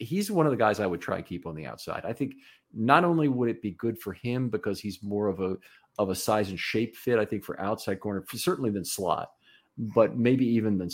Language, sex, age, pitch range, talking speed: English, male, 40-59, 90-115 Hz, 260 wpm